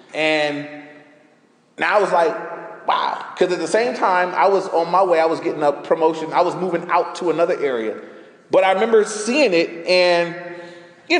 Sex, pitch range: male, 170-235 Hz